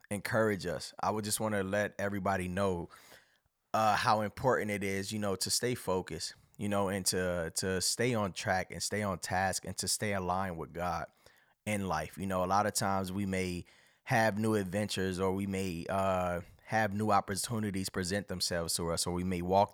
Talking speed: 200 wpm